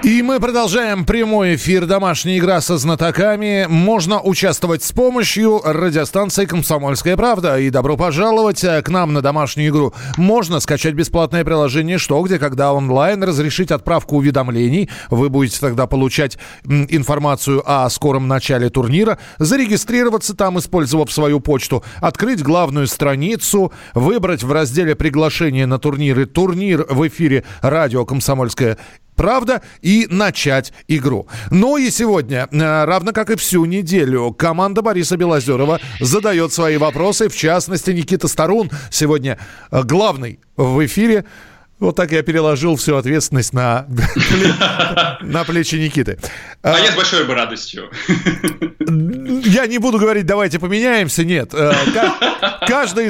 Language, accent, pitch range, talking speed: Russian, native, 145-195 Hz, 125 wpm